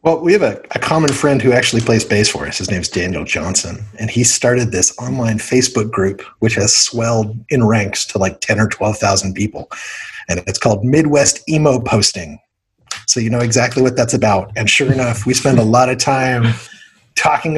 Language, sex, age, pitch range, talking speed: English, male, 30-49, 110-130 Hz, 200 wpm